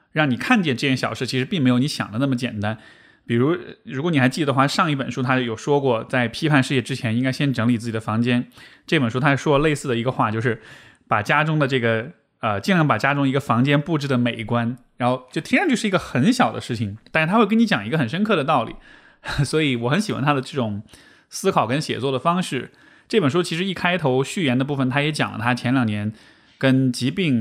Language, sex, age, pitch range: Chinese, male, 20-39, 125-160 Hz